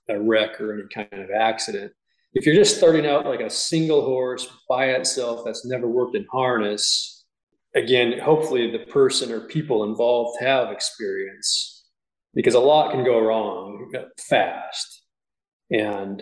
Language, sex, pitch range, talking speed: English, male, 110-140 Hz, 150 wpm